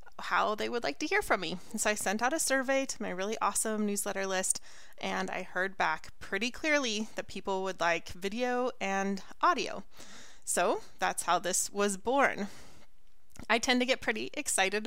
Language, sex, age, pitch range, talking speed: English, female, 20-39, 195-250 Hz, 180 wpm